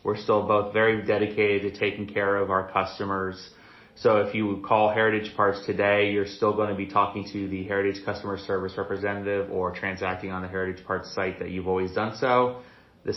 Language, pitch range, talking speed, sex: English, 100-115 Hz, 195 wpm, male